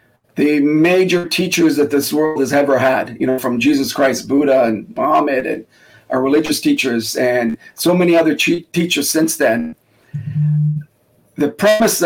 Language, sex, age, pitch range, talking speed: English, male, 40-59, 140-180 Hz, 150 wpm